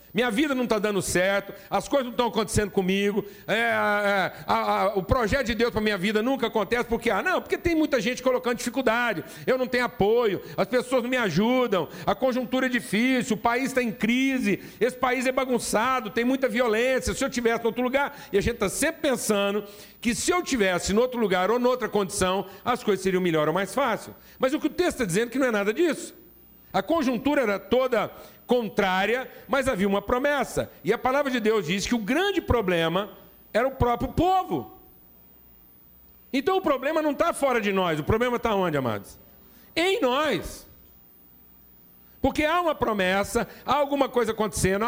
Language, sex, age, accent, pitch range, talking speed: Portuguese, male, 60-79, Brazilian, 195-260 Hz, 200 wpm